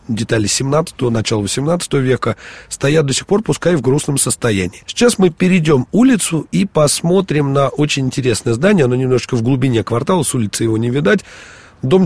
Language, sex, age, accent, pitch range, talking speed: Russian, male, 30-49, native, 120-165 Hz, 170 wpm